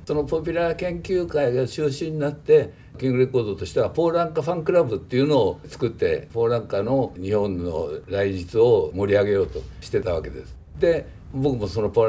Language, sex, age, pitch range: Japanese, male, 60-79, 105-155 Hz